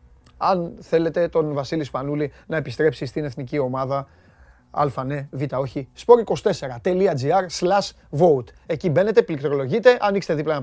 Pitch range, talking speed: 135-170 Hz, 120 wpm